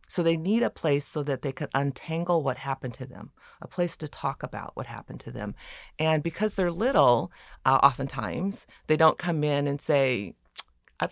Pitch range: 130-170 Hz